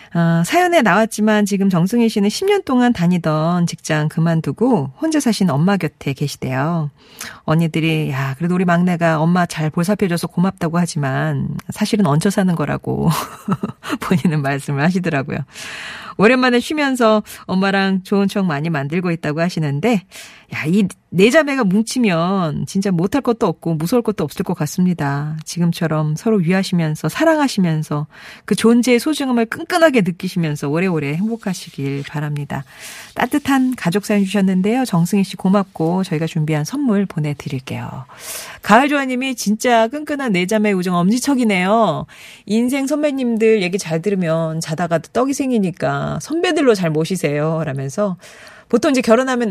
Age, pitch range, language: 40-59, 160-225 Hz, Korean